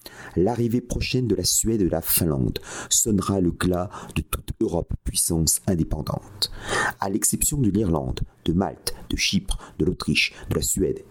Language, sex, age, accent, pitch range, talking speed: French, male, 50-69, French, 80-110 Hz, 160 wpm